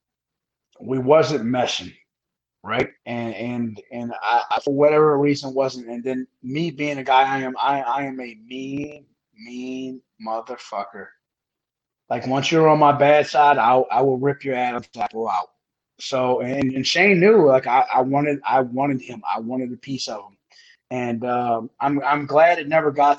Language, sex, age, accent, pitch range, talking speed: English, male, 20-39, American, 125-145 Hz, 170 wpm